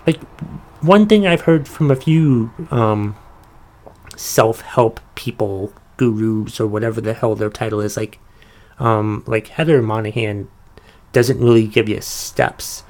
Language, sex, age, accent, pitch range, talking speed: English, male, 30-49, American, 110-135 Hz, 140 wpm